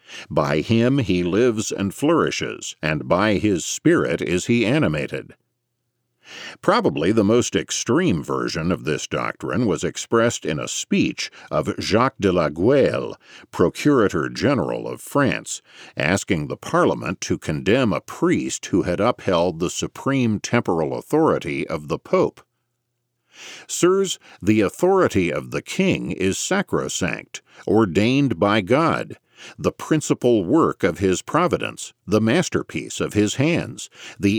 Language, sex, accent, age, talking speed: English, male, American, 50-69, 130 wpm